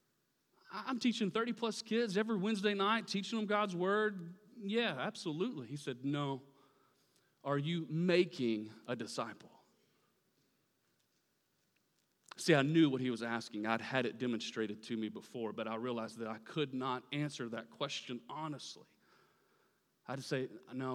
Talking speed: 145 wpm